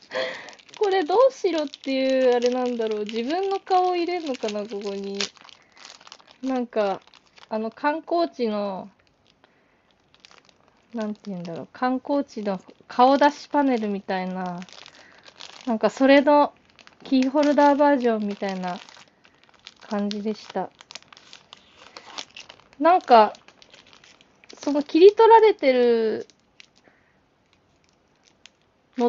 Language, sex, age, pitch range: Japanese, female, 20-39, 210-320 Hz